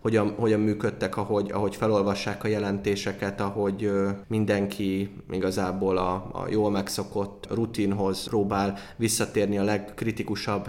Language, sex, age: Hungarian, male, 20-39